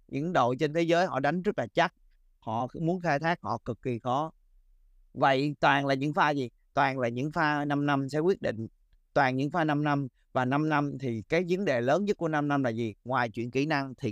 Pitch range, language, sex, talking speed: 130-170 Hz, Vietnamese, male, 240 wpm